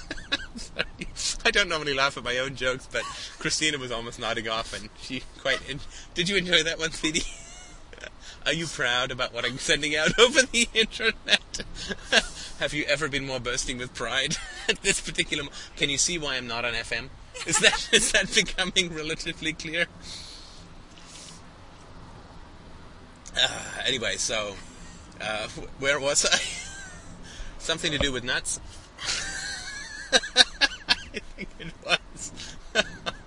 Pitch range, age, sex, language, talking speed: 110-160 Hz, 30-49, male, English, 135 wpm